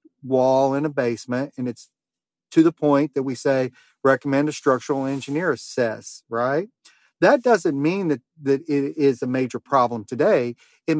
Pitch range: 130-165 Hz